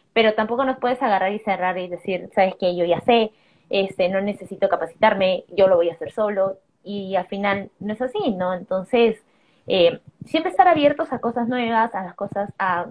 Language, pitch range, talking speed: Spanish, 185-230 Hz, 200 wpm